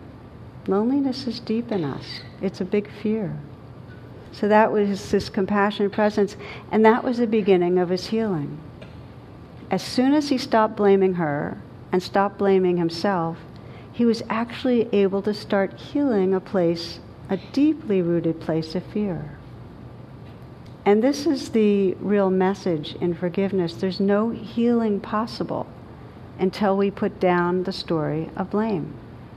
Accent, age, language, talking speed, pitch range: American, 60-79, English, 140 wpm, 170-210 Hz